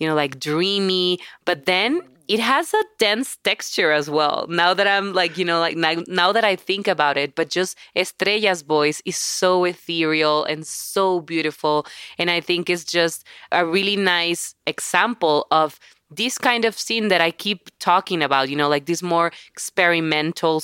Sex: female